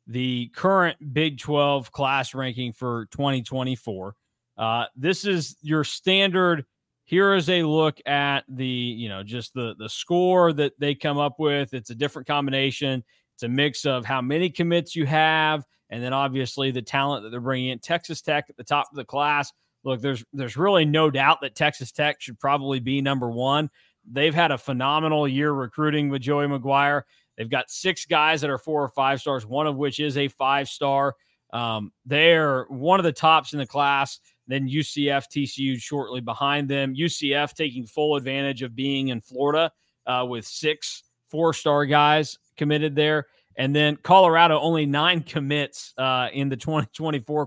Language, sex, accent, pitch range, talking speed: English, male, American, 130-155 Hz, 175 wpm